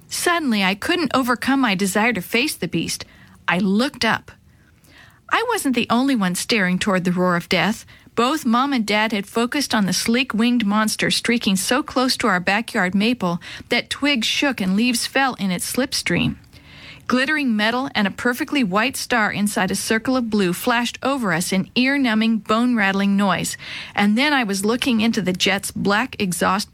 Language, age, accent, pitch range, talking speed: English, 50-69, American, 200-255 Hz, 175 wpm